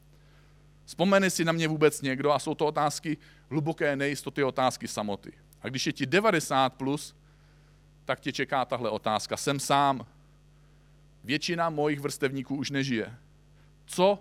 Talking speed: 140 wpm